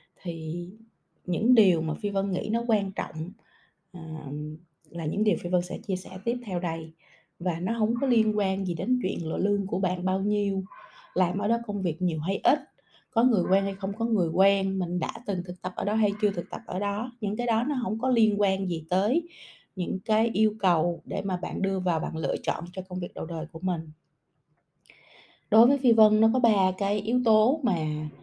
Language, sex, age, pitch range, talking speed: Vietnamese, female, 20-39, 175-220 Hz, 225 wpm